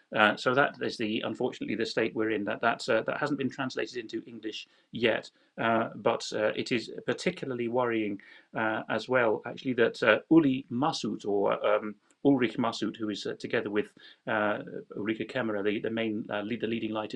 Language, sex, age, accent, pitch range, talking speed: English, male, 40-59, British, 110-135 Hz, 190 wpm